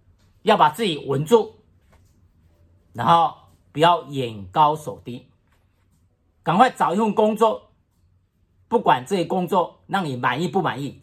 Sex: male